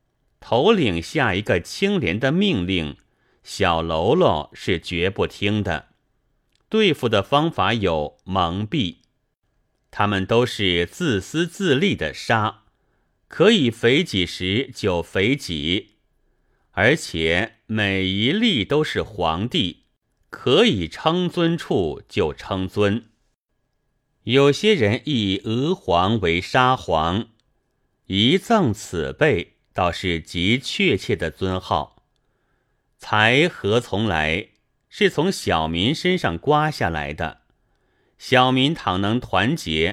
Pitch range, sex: 95-135 Hz, male